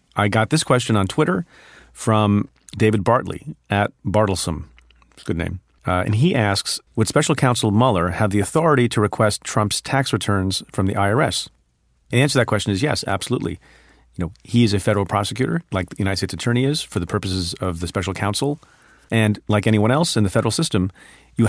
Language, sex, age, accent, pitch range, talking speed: English, male, 40-59, American, 90-110 Hz, 200 wpm